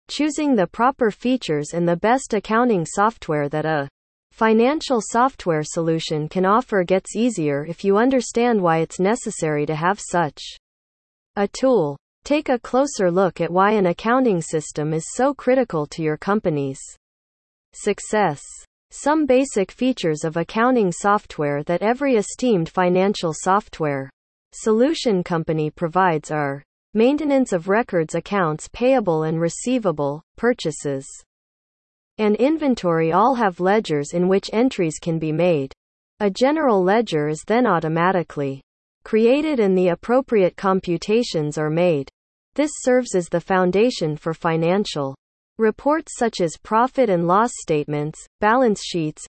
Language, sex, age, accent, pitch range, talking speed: English, female, 40-59, American, 160-230 Hz, 130 wpm